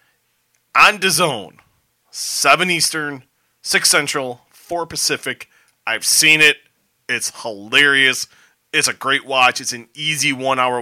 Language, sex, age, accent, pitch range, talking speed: English, male, 30-49, American, 115-150 Hz, 120 wpm